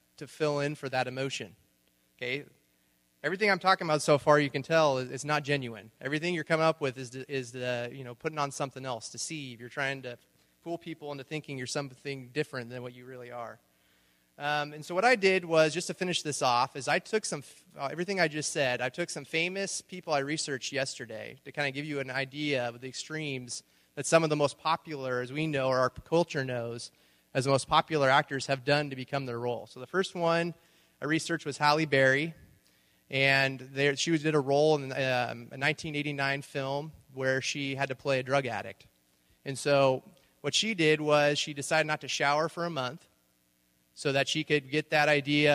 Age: 30-49